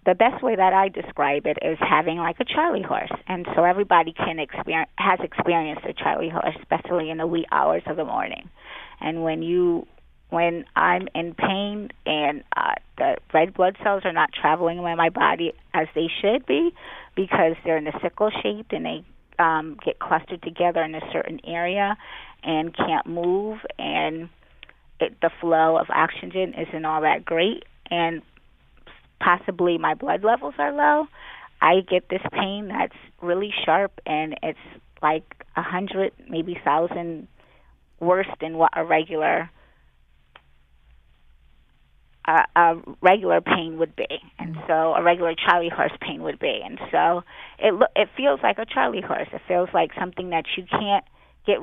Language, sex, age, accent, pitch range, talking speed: English, female, 30-49, American, 160-195 Hz, 165 wpm